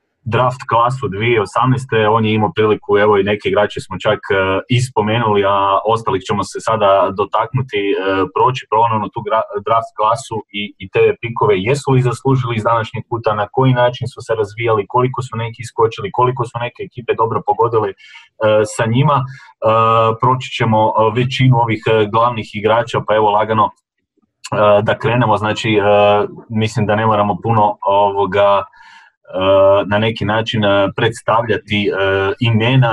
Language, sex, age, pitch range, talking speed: Croatian, male, 30-49, 105-125 Hz, 150 wpm